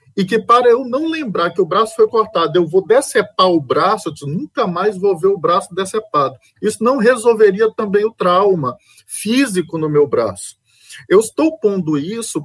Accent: Brazilian